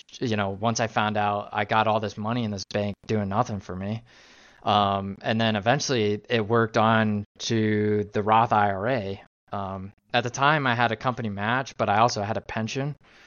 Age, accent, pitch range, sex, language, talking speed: 20-39, American, 100-115 Hz, male, English, 200 wpm